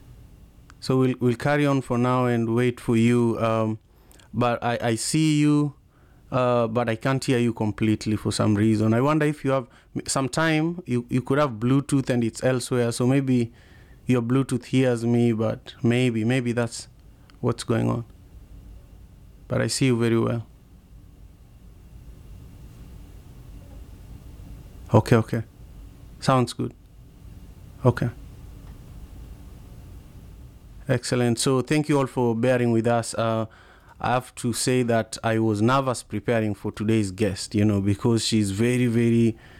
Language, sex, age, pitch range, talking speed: English, male, 30-49, 110-125 Hz, 140 wpm